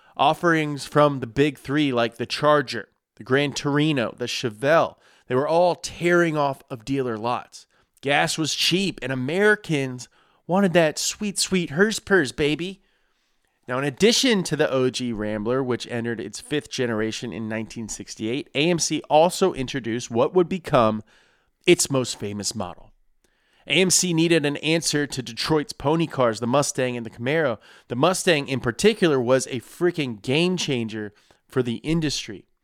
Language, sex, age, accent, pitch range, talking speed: English, male, 30-49, American, 120-165 Hz, 150 wpm